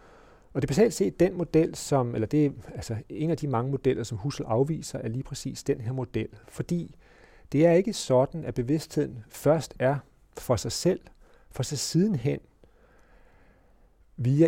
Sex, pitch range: male, 115-145 Hz